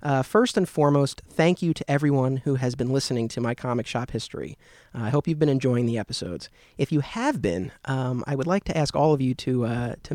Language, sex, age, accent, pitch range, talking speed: English, male, 30-49, American, 125-155 Hz, 240 wpm